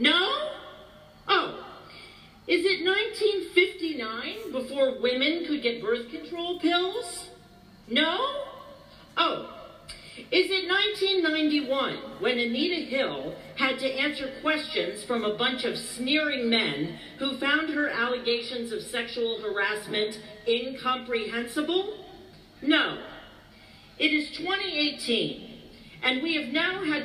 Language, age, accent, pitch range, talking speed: English, 40-59, American, 225-320 Hz, 105 wpm